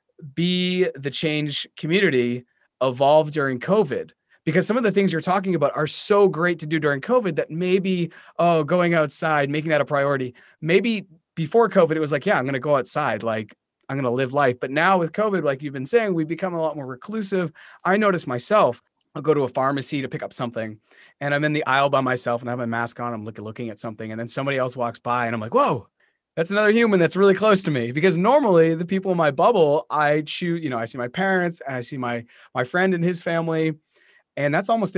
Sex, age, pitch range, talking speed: male, 30-49, 130-175 Hz, 235 wpm